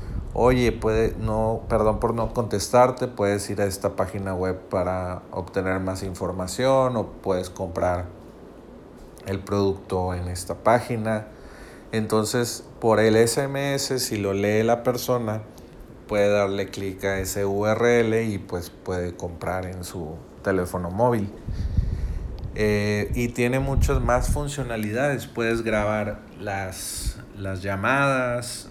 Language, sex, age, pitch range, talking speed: Spanish, male, 40-59, 95-110 Hz, 125 wpm